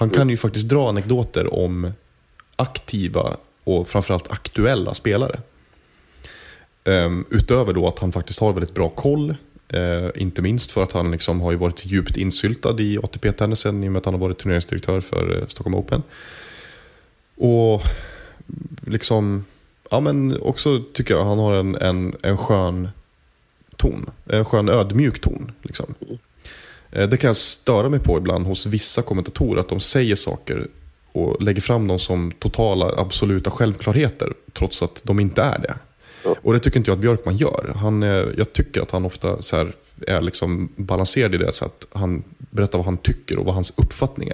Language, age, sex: Swedish, 20-39, male